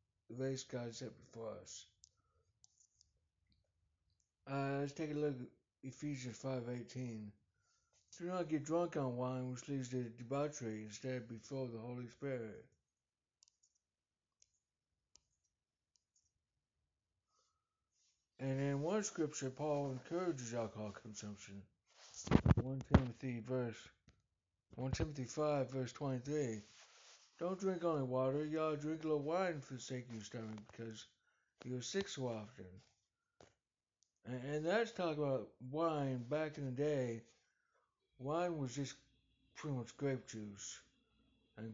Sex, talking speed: male, 120 wpm